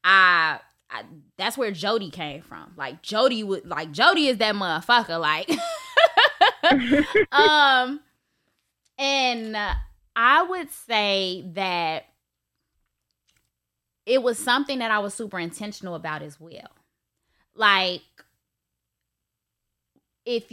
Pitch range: 160-210 Hz